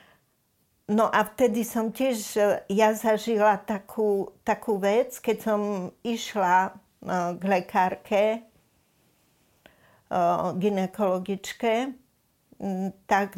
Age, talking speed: 50-69, 80 wpm